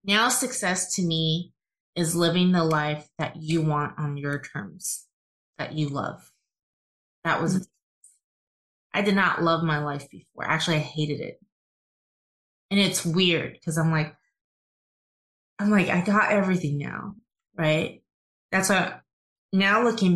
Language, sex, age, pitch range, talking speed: English, female, 20-39, 155-185 Hz, 140 wpm